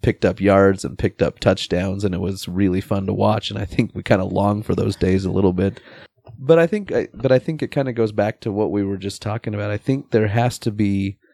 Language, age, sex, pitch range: English, 30-49, male, 100-120 Hz